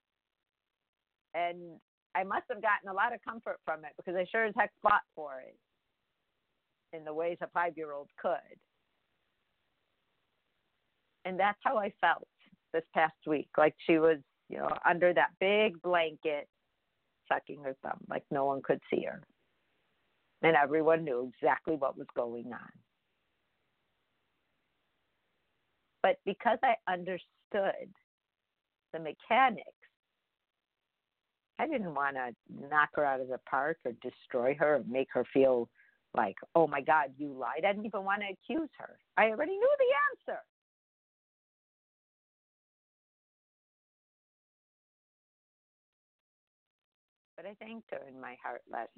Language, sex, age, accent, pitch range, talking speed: English, female, 50-69, American, 150-215 Hz, 130 wpm